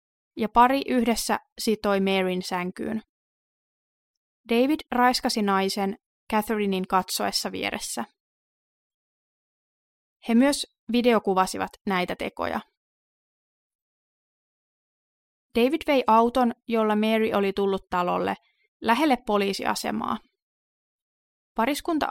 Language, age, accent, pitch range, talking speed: Finnish, 20-39, native, 195-245 Hz, 75 wpm